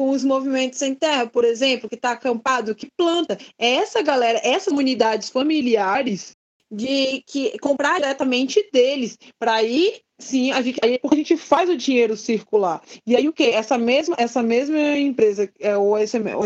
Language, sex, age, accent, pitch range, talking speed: Portuguese, female, 20-39, Brazilian, 240-315 Hz, 165 wpm